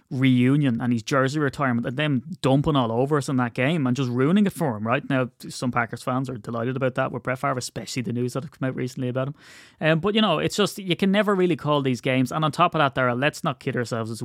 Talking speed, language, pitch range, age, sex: 280 wpm, English, 120-145 Hz, 20-39, male